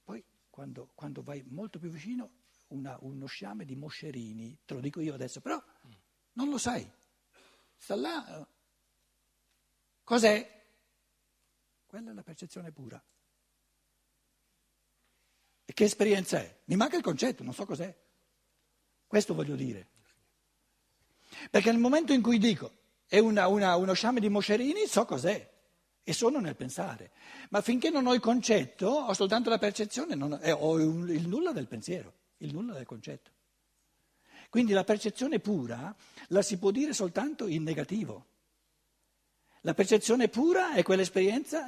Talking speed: 135 wpm